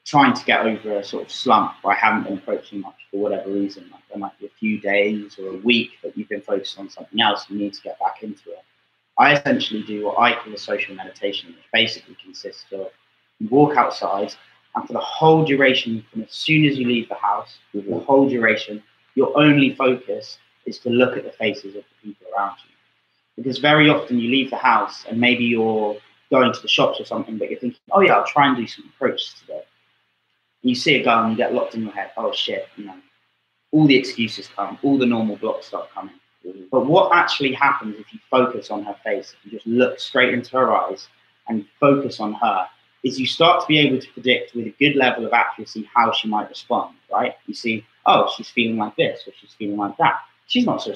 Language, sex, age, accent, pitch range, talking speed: English, male, 20-39, British, 105-135 Hz, 230 wpm